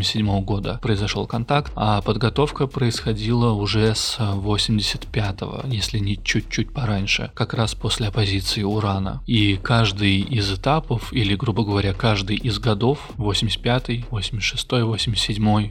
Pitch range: 100-120 Hz